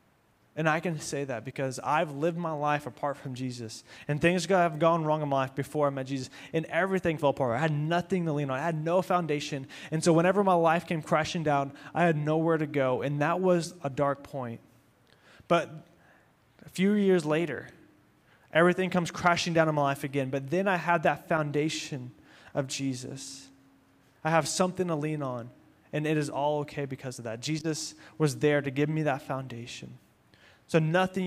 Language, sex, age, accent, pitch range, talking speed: English, male, 20-39, American, 135-165 Hz, 200 wpm